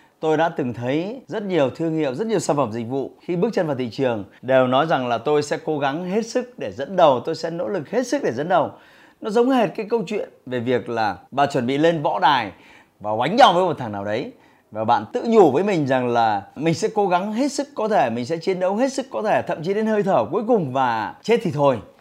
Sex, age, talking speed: male, 20-39, 275 wpm